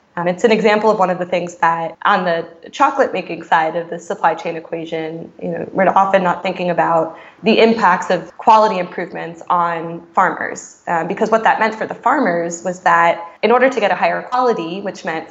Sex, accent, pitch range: female, American, 170-225 Hz